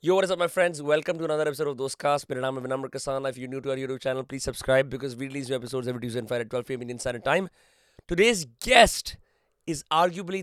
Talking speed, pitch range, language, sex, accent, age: 260 wpm, 130-160 Hz, Hindi, male, native, 20-39